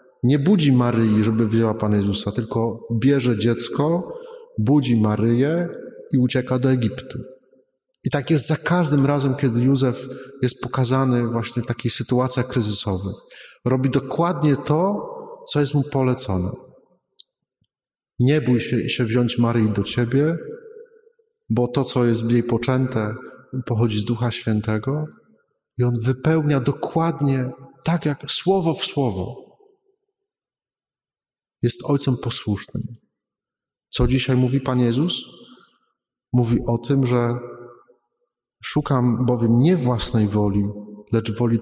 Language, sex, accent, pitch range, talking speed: Polish, male, native, 115-140 Hz, 120 wpm